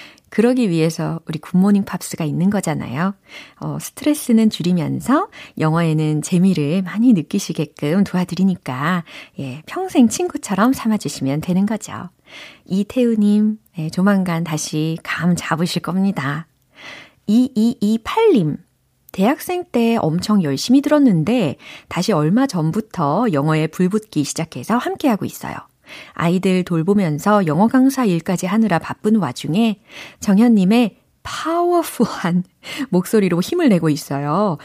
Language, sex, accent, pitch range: Korean, female, native, 160-230 Hz